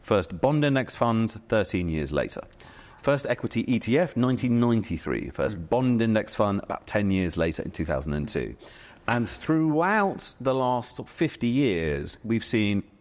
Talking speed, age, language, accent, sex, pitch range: 135 wpm, 40-59, English, British, male, 95-130 Hz